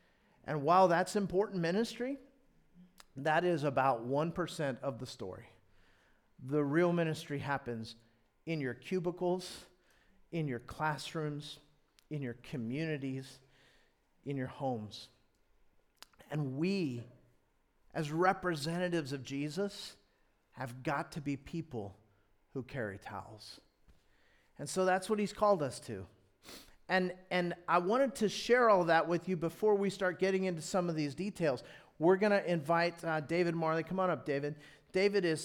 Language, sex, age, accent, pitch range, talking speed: English, male, 40-59, American, 140-180 Hz, 140 wpm